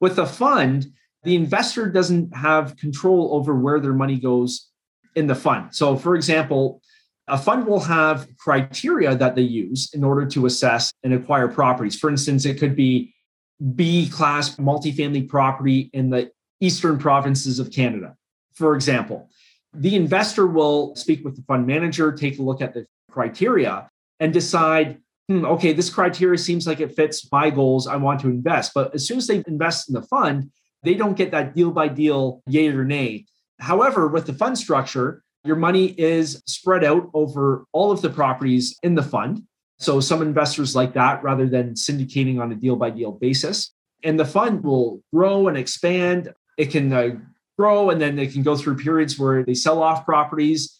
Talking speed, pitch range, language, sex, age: 175 wpm, 135-165 Hz, English, male, 30-49